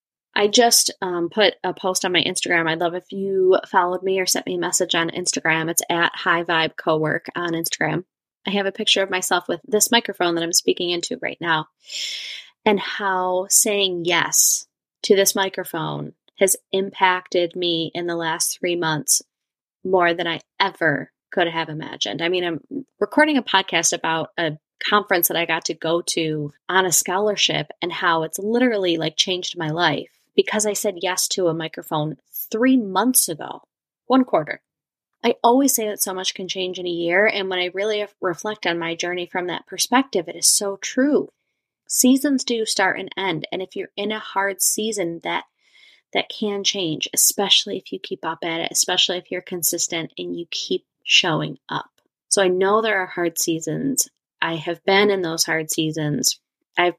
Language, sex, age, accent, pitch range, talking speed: English, female, 20-39, American, 170-200 Hz, 185 wpm